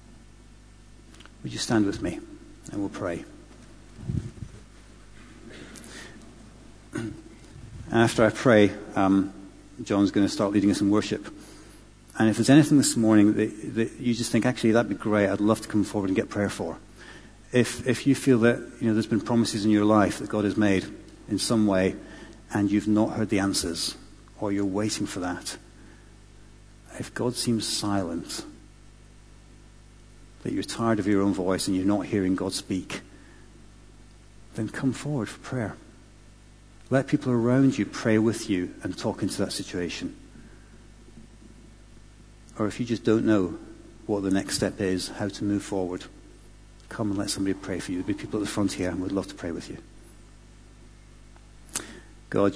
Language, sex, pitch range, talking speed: English, male, 100-115 Hz, 170 wpm